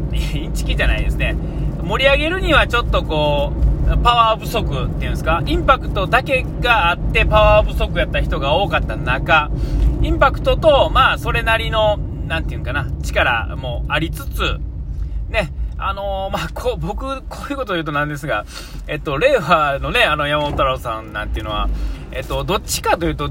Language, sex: Japanese, male